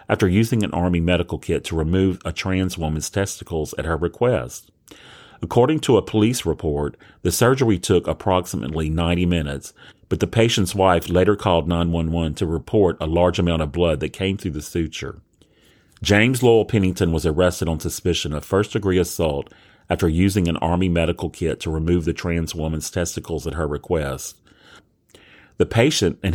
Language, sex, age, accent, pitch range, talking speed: English, male, 40-59, American, 80-95 Hz, 165 wpm